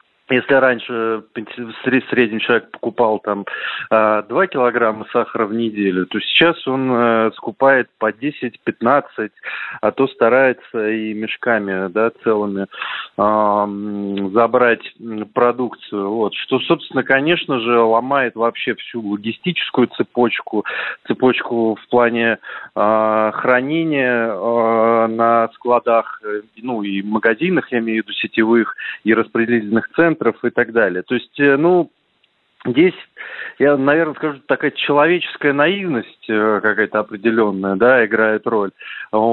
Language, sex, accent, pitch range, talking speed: Russian, male, native, 110-135 Hz, 110 wpm